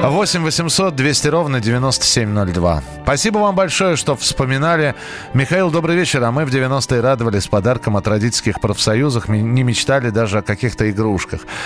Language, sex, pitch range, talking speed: Russian, male, 95-135 Hz, 145 wpm